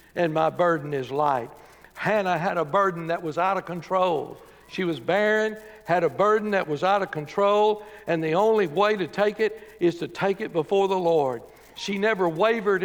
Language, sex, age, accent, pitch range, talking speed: English, male, 60-79, American, 170-230 Hz, 195 wpm